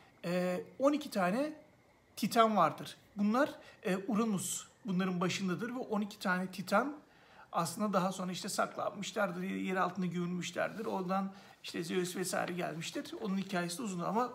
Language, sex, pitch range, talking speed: Turkish, male, 180-225 Hz, 125 wpm